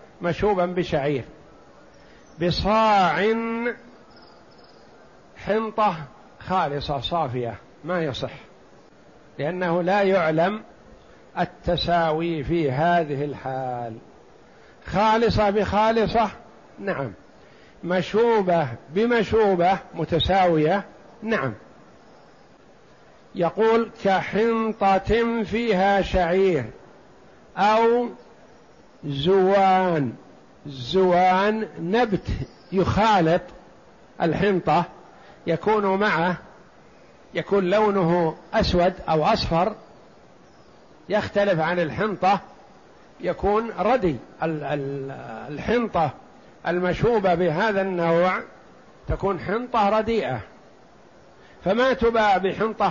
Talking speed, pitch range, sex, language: 60 wpm, 165-215 Hz, male, Arabic